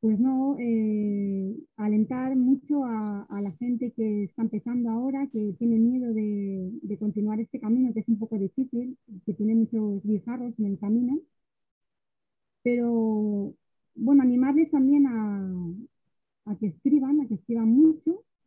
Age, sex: 30-49, female